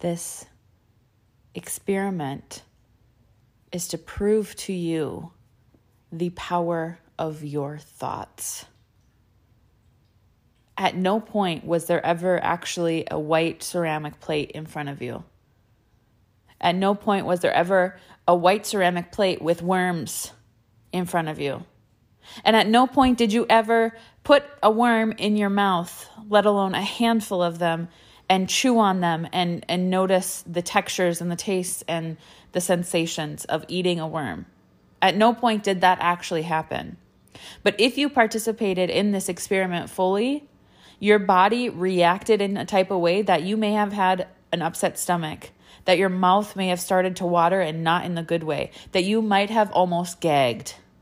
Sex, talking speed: female, 160 wpm